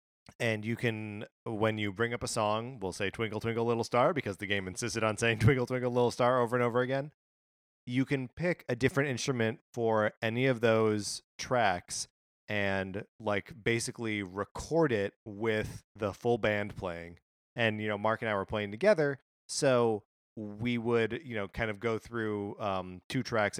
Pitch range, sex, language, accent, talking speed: 100-125 Hz, male, English, American, 180 wpm